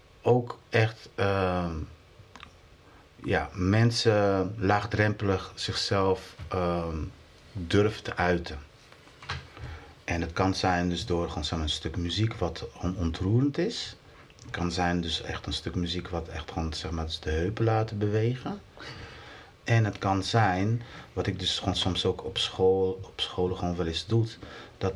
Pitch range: 90-115 Hz